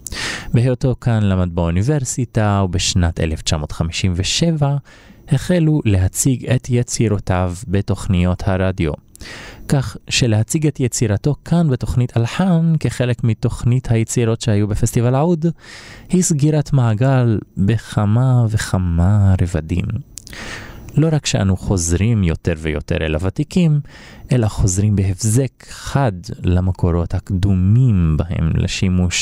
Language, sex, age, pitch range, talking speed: Hebrew, male, 20-39, 90-125 Hz, 95 wpm